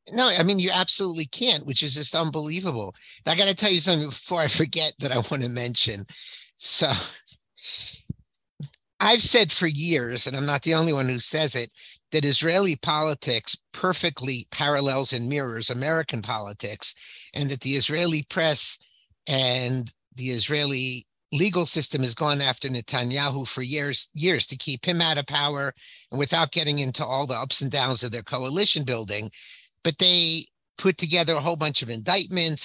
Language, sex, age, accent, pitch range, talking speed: English, male, 50-69, American, 130-165 Hz, 170 wpm